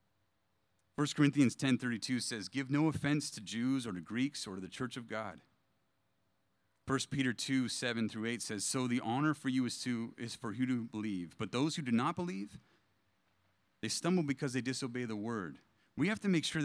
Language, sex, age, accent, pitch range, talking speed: English, male, 40-59, American, 95-135 Hz, 200 wpm